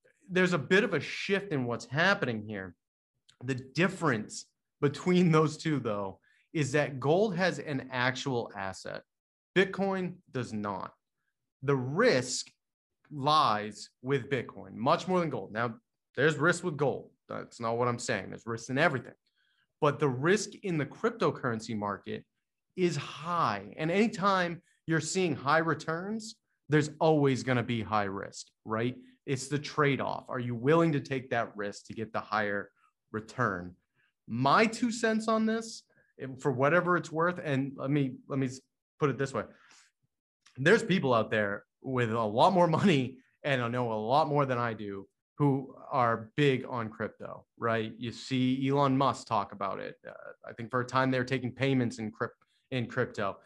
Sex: male